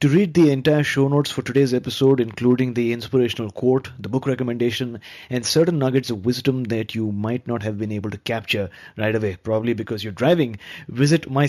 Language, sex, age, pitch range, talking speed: English, male, 30-49, 110-135 Hz, 205 wpm